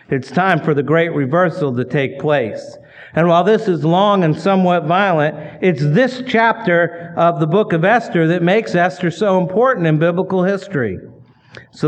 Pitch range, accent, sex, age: 145-180 Hz, American, male, 50-69